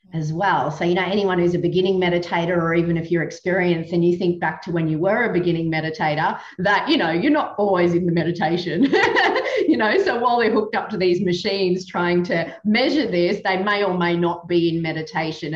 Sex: female